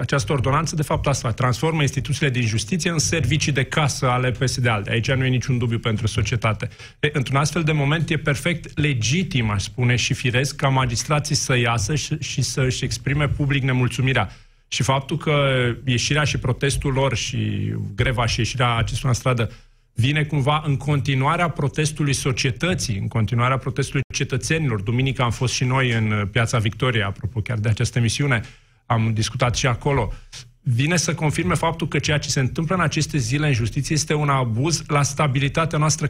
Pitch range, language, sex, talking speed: 125-150 Hz, Romanian, male, 175 wpm